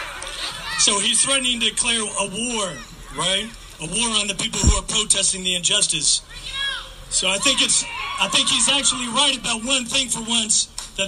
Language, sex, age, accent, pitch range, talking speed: English, male, 40-59, American, 165-220 Hz, 175 wpm